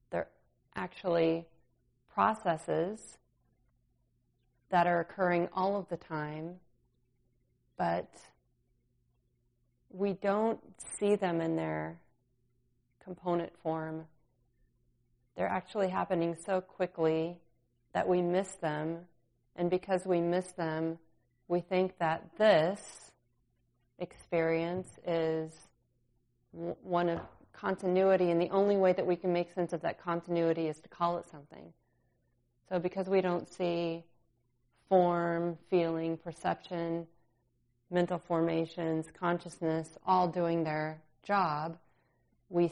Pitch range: 125-175 Hz